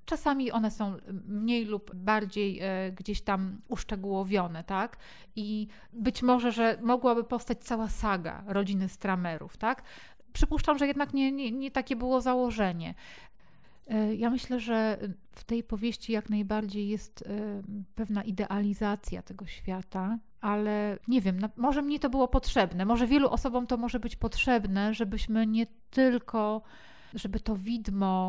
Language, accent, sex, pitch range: Polish, native, female, 200-235 Hz